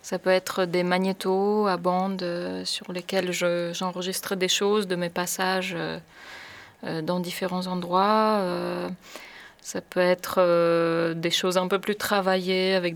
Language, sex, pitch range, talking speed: French, female, 180-200 Hz, 155 wpm